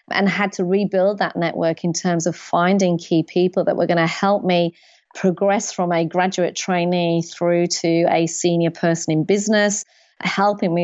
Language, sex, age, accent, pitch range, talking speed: English, female, 30-49, British, 170-200 Hz, 175 wpm